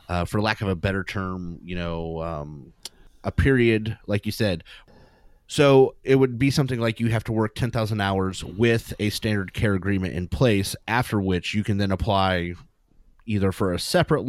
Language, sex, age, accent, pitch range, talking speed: English, male, 30-49, American, 95-125 Hz, 185 wpm